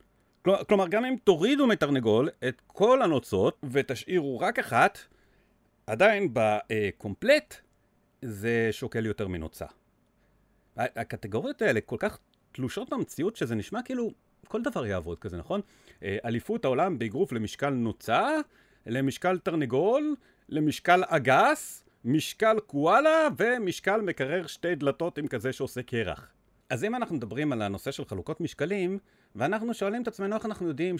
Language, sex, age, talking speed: Hebrew, male, 40-59, 130 wpm